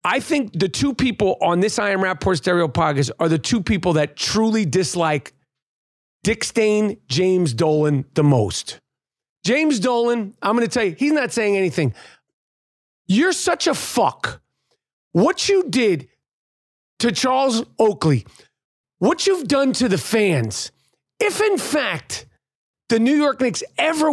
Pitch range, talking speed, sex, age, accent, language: 165-250 Hz, 150 wpm, male, 40-59, American, English